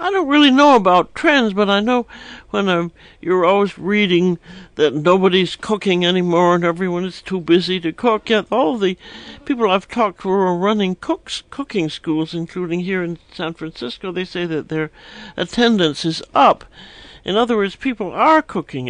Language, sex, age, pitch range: English, male, 60-79, 160-205 Hz